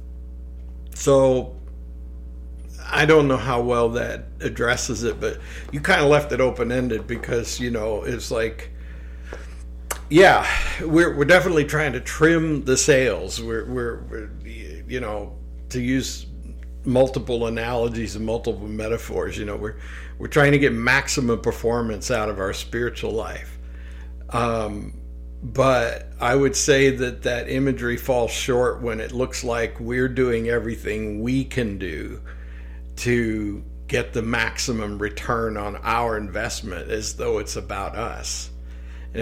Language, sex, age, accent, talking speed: English, male, 60-79, American, 140 wpm